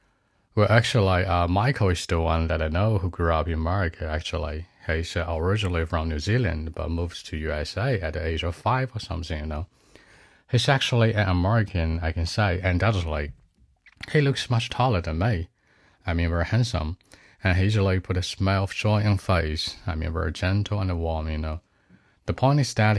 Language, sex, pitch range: Chinese, male, 80-105 Hz